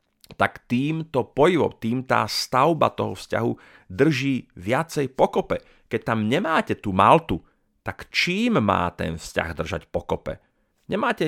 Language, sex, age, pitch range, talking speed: Slovak, male, 40-59, 95-120 Hz, 130 wpm